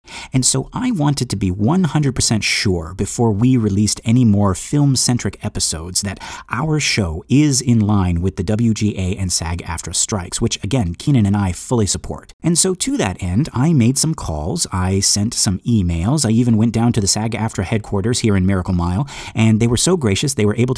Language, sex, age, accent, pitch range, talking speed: English, male, 30-49, American, 95-130 Hz, 200 wpm